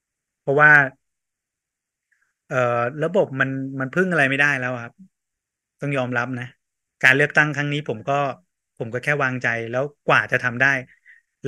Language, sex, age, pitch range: Thai, male, 30-49, 120-145 Hz